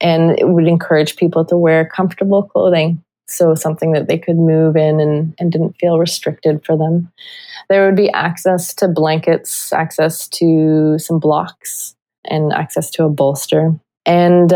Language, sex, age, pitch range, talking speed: English, female, 20-39, 160-180 Hz, 160 wpm